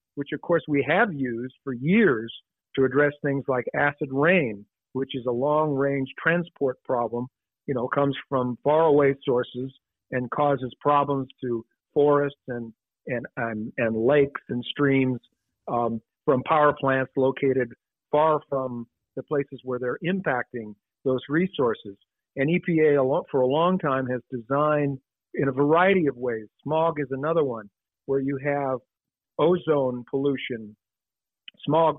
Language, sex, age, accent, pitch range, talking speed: English, male, 50-69, American, 125-155 Hz, 140 wpm